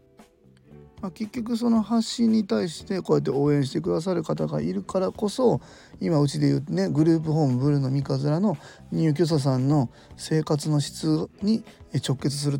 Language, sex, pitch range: Japanese, male, 125-170 Hz